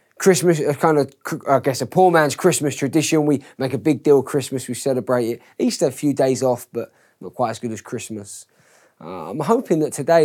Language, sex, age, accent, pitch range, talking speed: English, male, 20-39, British, 130-175 Hz, 220 wpm